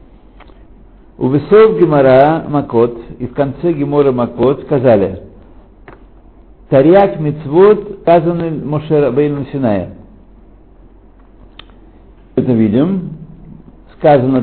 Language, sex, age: Russian, male, 60-79